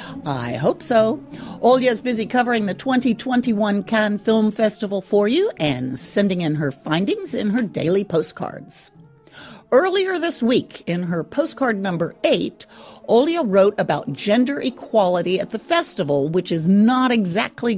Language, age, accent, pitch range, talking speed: English, 50-69, American, 175-265 Hz, 140 wpm